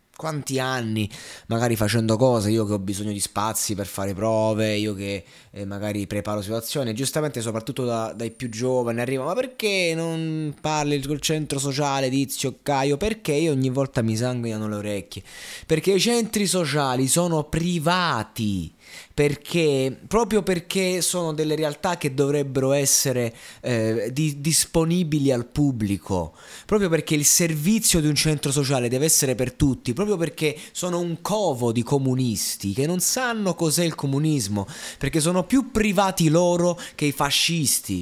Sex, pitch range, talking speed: male, 115-160 Hz, 150 wpm